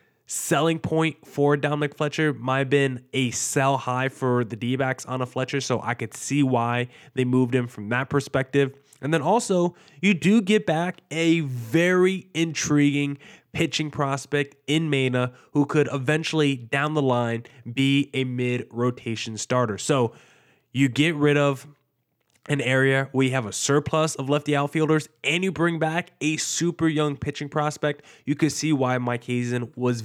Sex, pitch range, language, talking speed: male, 125-155 Hz, English, 165 wpm